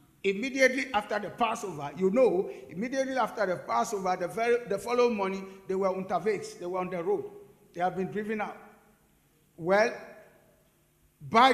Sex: male